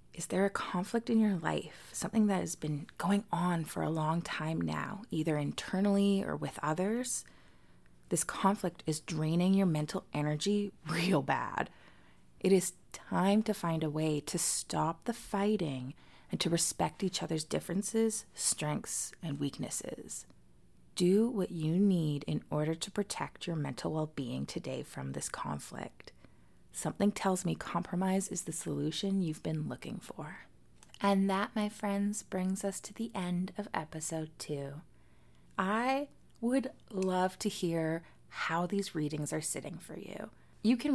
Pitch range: 155-200 Hz